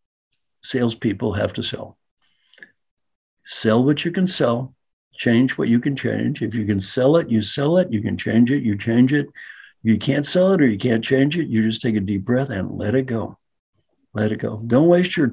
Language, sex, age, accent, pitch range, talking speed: English, male, 60-79, American, 110-135 Hz, 210 wpm